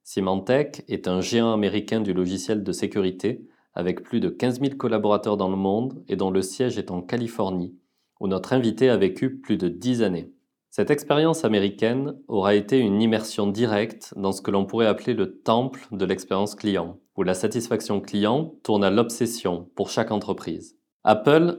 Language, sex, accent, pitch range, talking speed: French, male, French, 95-115 Hz, 180 wpm